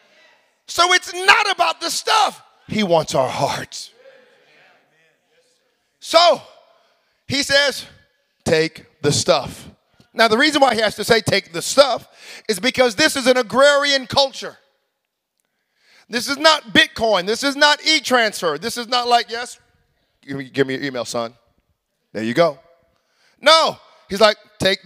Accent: American